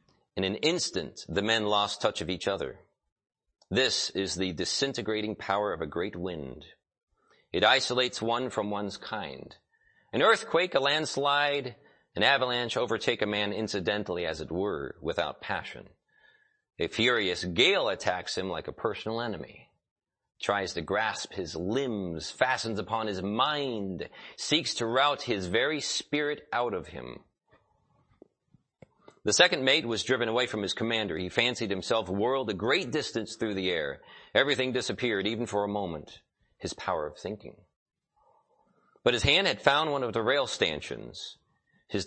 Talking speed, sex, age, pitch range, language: 155 wpm, male, 30-49, 100-130 Hz, English